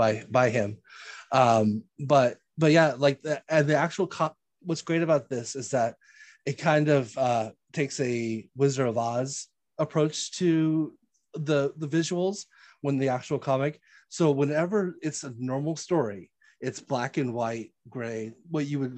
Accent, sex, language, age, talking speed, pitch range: American, male, English, 30-49, 160 wpm, 125-155 Hz